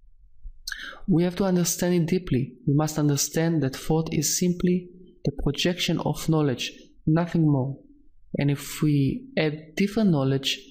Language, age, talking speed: English, 20-39, 140 wpm